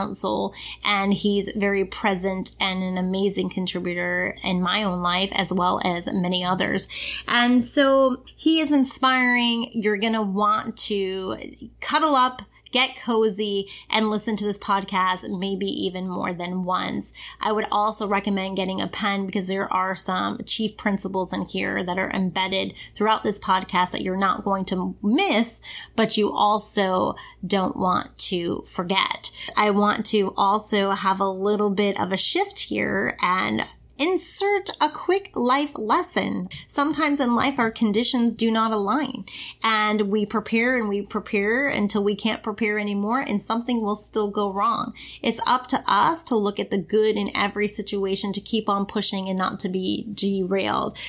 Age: 20-39